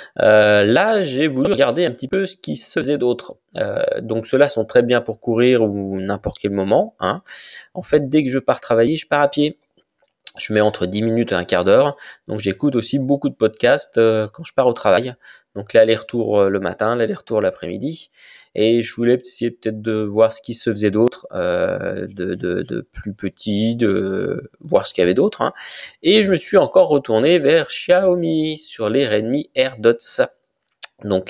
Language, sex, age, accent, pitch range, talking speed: French, male, 20-39, French, 110-140 Hz, 195 wpm